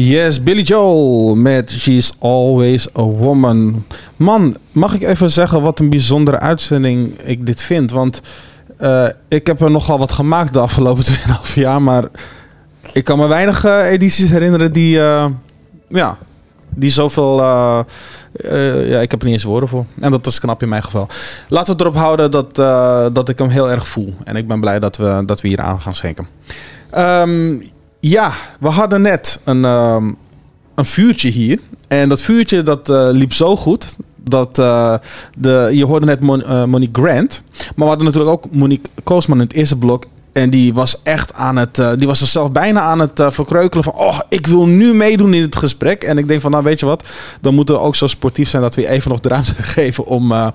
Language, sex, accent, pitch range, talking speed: Dutch, male, Dutch, 120-155 Hz, 200 wpm